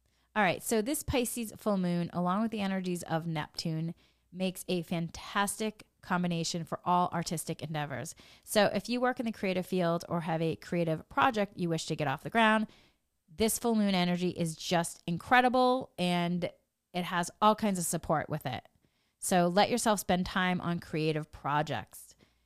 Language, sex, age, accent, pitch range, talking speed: English, female, 30-49, American, 160-200 Hz, 175 wpm